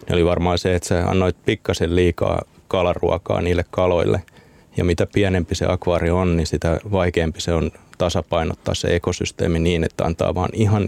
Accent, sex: native, male